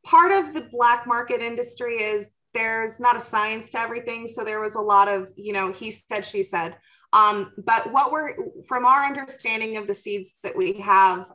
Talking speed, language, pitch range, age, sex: 200 wpm, English, 200-245 Hz, 20-39, female